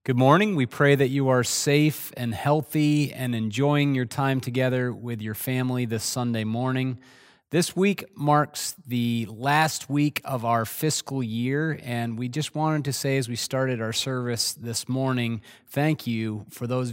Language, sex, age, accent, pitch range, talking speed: English, male, 30-49, American, 115-140 Hz, 170 wpm